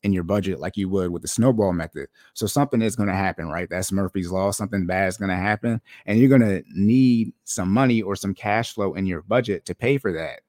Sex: male